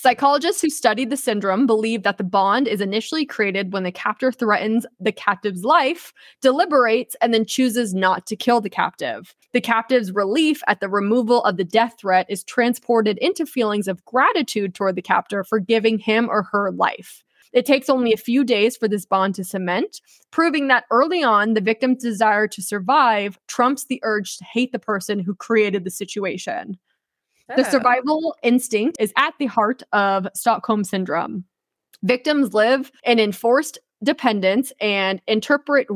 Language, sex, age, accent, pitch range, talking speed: English, female, 20-39, American, 205-260 Hz, 170 wpm